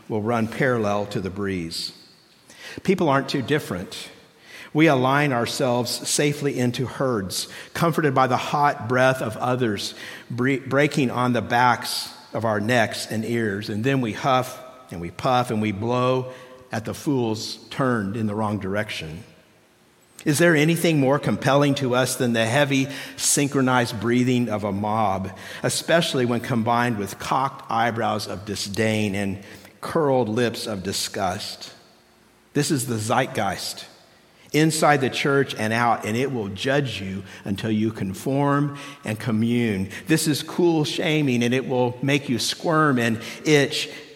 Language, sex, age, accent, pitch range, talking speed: English, male, 50-69, American, 110-140 Hz, 150 wpm